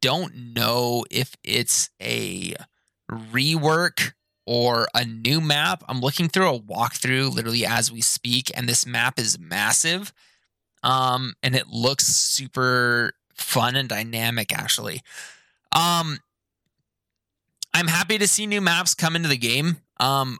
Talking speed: 130 wpm